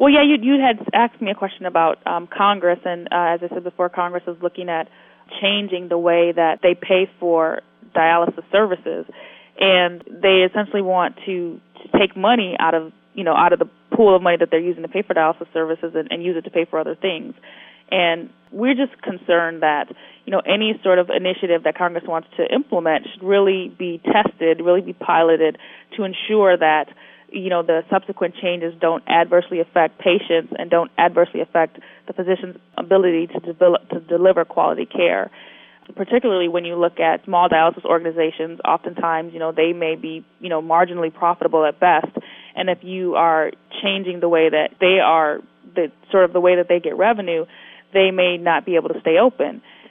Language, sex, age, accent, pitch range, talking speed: English, female, 20-39, American, 165-190 Hz, 195 wpm